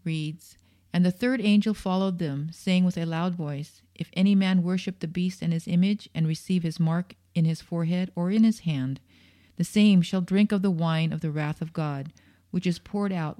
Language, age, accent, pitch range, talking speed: English, 40-59, American, 155-180 Hz, 215 wpm